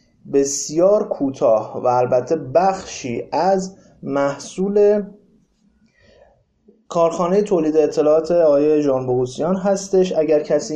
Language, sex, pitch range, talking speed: Persian, male, 130-185 Hz, 90 wpm